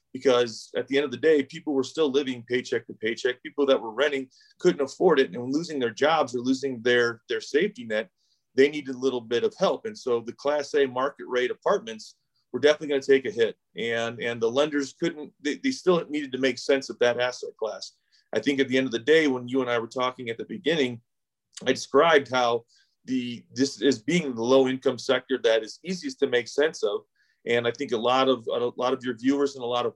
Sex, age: male, 30-49